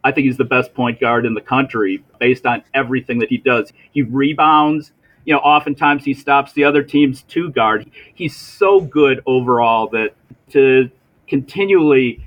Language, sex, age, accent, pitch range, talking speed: English, male, 40-59, American, 120-145 Hz, 170 wpm